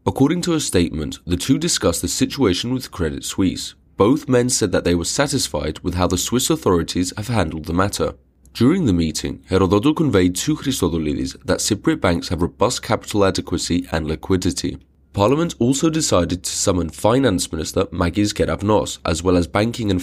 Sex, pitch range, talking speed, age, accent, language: male, 85-120 Hz, 175 wpm, 30-49, British, English